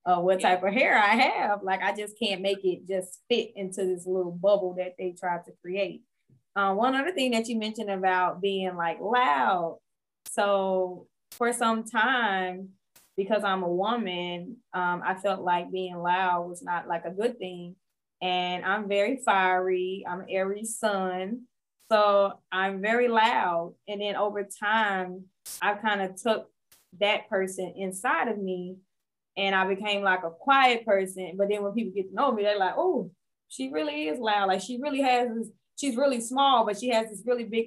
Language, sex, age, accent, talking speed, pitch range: English, female, 10-29, American, 180 wpm, 180-220 Hz